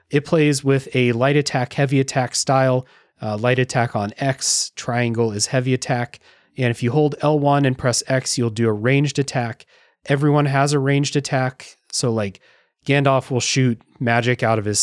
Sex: male